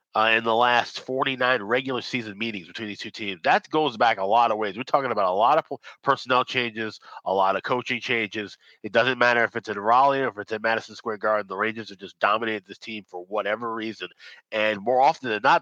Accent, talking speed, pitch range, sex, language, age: American, 240 wpm, 105-125 Hz, male, English, 30-49